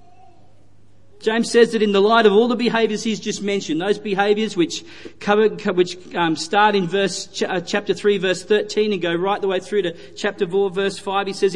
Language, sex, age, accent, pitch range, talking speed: English, male, 40-59, Australian, 170-215 Hz, 190 wpm